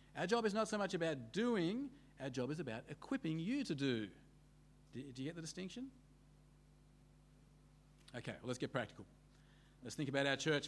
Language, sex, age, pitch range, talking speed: English, male, 40-59, 135-175 Hz, 175 wpm